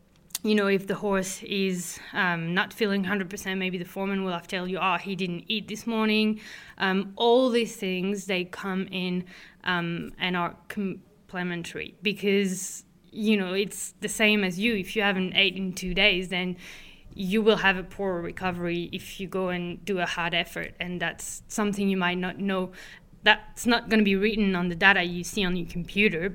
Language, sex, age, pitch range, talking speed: English, female, 20-39, 180-210 Hz, 195 wpm